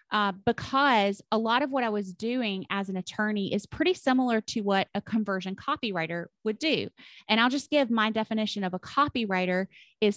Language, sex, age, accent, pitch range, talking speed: English, female, 30-49, American, 195-245 Hz, 190 wpm